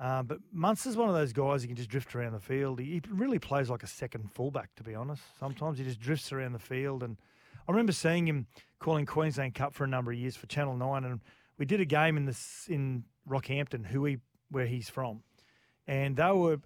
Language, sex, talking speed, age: English, male, 235 wpm, 30-49